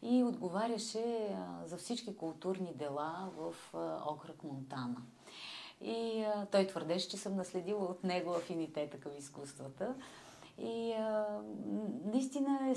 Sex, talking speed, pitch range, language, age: female, 120 wpm, 140-205 Hz, Bulgarian, 30-49